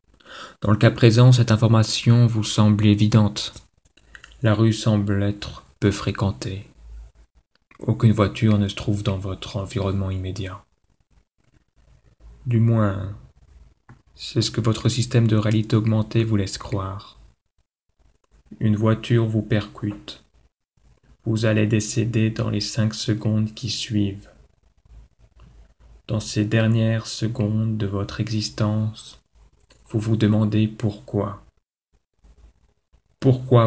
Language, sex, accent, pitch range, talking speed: French, male, French, 90-110 Hz, 110 wpm